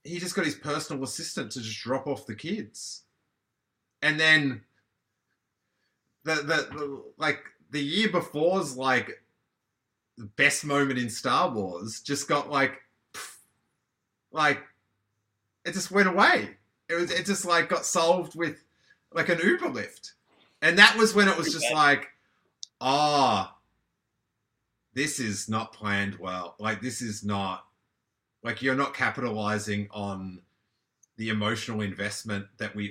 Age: 30-49